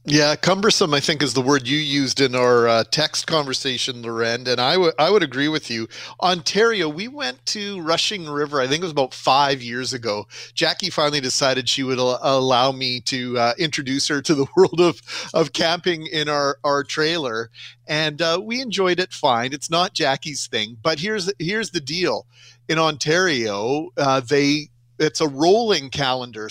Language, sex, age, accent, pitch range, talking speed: English, male, 40-59, American, 130-160 Hz, 185 wpm